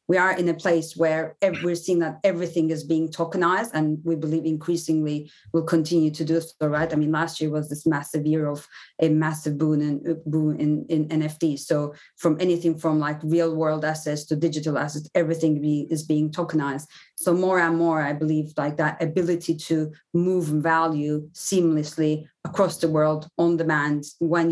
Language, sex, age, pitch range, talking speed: English, female, 30-49, 150-165 Hz, 180 wpm